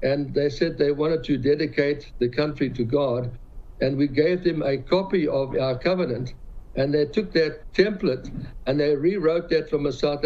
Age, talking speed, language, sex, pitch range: 60-79, 185 wpm, English, male, 135-165 Hz